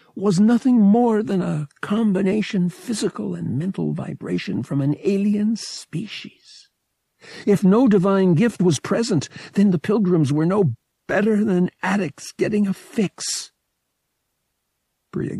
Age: 60-79